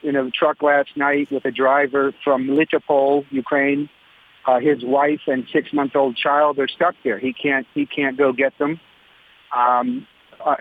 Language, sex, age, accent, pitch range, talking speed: English, male, 50-69, American, 135-145 Hz, 165 wpm